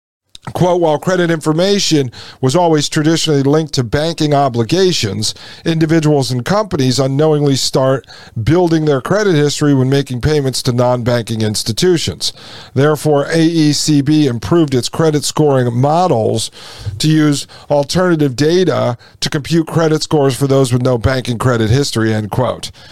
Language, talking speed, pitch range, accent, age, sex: English, 130 wpm, 130-160 Hz, American, 50-69, male